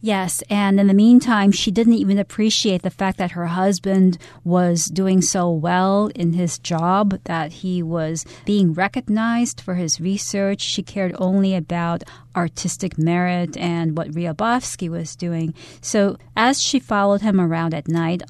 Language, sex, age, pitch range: Chinese, female, 40-59, 170-210 Hz